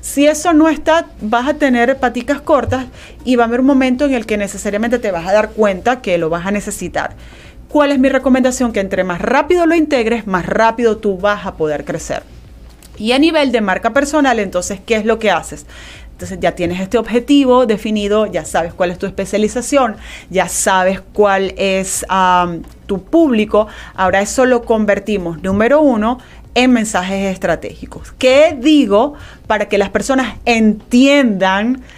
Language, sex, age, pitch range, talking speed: Spanish, female, 30-49, 185-250 Hz, 175 wpm